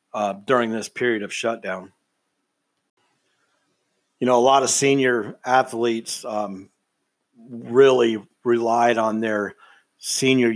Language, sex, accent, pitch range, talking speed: English, male, American, 115-135 Hz, 110 wpm